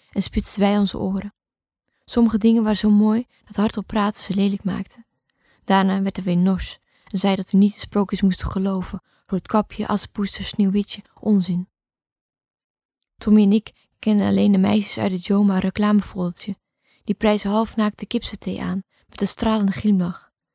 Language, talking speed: Dutch, 160 wpm